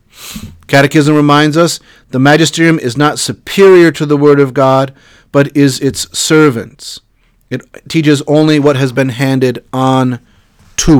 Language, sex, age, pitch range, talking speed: English, male, 40-59, 125-145 Hz, 140 wpm